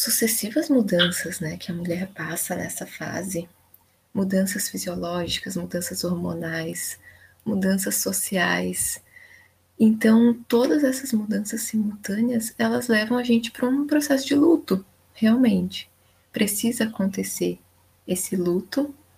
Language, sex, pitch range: Portuguese, female, 180-235 Hz